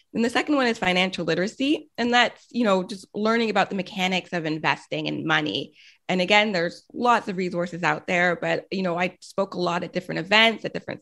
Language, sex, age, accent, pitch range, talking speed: English, female, 20-39, American, 180-230 Hz, 220 wpm